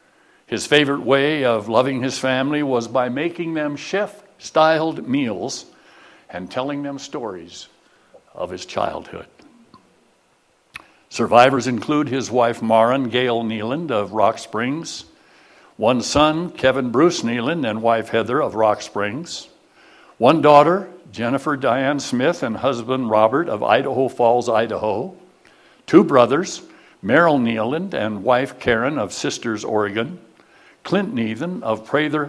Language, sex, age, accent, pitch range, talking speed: English, male, 60-79, American, 120-160 Hz, 125 wpm